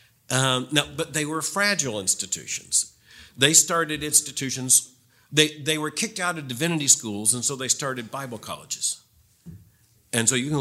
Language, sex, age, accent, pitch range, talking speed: English, male, 50-69, American, 110-145 Hz, 155 wpm